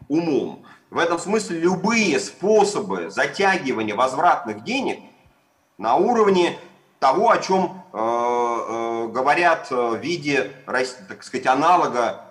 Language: Russian